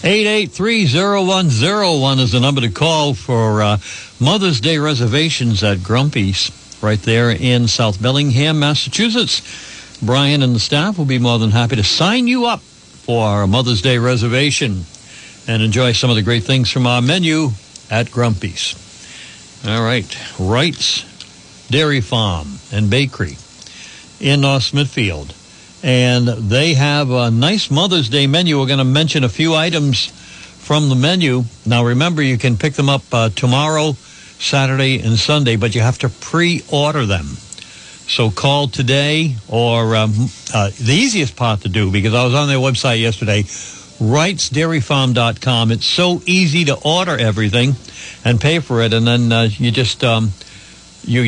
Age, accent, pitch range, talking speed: 60-79, American, 115-145 Hz, 150 wpm